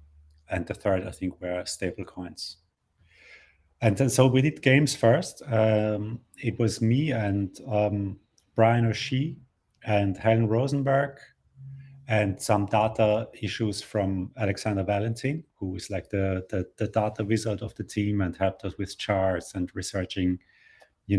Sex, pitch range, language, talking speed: male, 95-125 Hz, English, 145 wpm